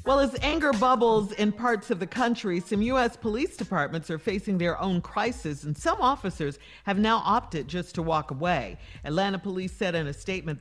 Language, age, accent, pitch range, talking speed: English, 50-69, American, 150-200 Hz, 190 wpm